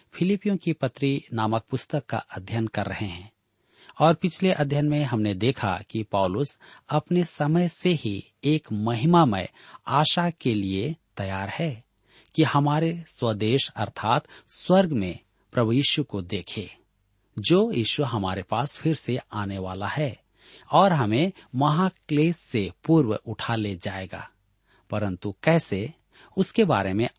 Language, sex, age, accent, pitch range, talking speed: Hindi, male, 40-59, native, 105-150 Hz, 135 wpm